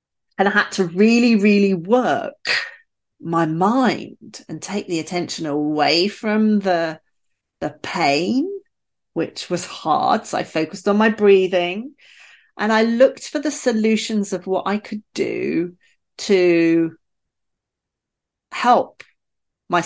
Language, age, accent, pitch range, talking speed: English, 40-59, British, 170-245 Hz, 125 wpm